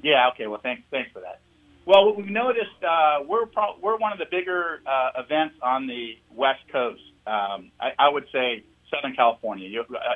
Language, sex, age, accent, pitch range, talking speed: English, male, 40-59, American, 115-160 Hz, 190 wpm